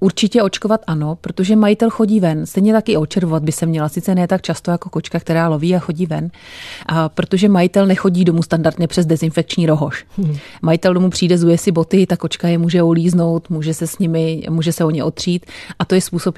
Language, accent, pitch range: Czech, native, 160-180 Hz